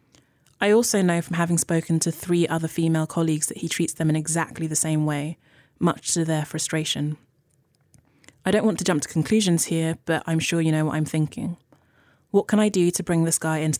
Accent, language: British, English